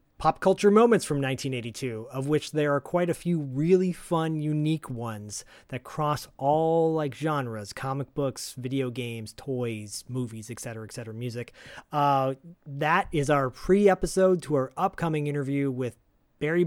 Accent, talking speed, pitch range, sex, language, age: American, 155 wpm, 125-155 Hz, male, English, 30-49